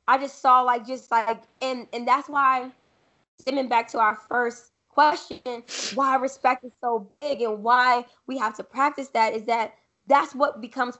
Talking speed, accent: 180 wpm, American